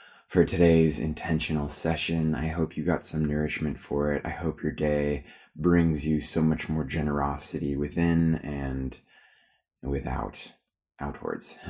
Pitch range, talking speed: 75-85 Hz, 135 wpm